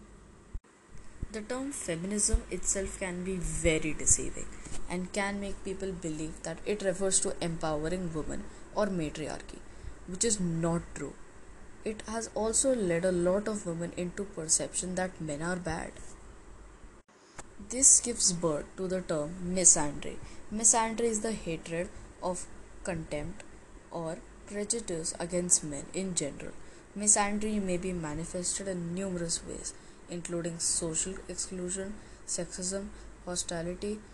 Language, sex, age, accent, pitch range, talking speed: English, female, 20-39, Indian, 170-200 Hz, 125 wpm